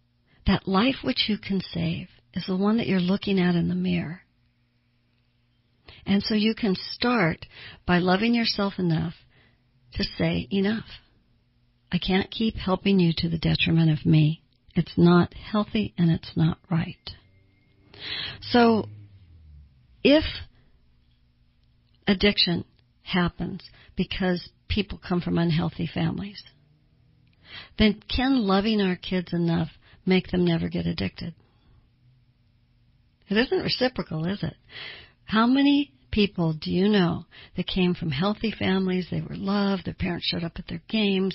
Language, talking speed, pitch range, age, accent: English, 135 wpm, 125-195 Hz, 60-79, American